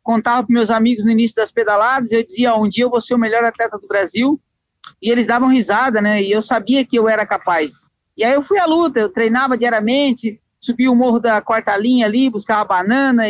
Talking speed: 230 wpm